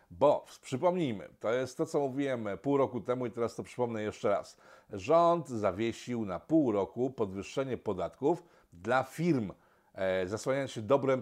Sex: male